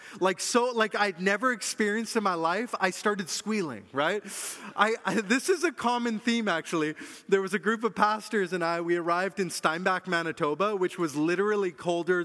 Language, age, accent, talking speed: English, 30-49, American, 185 wpm